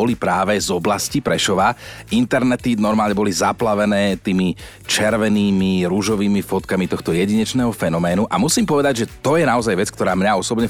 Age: 30-49